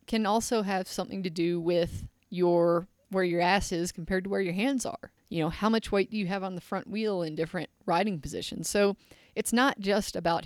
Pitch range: 175-225 Hz